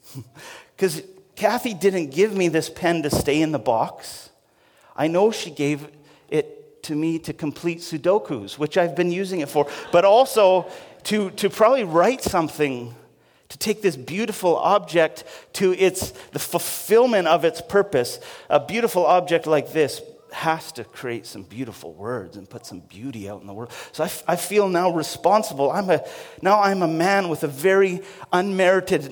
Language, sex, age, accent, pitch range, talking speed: English, male, 40-59, American, 150-200 Hz, 170 wpm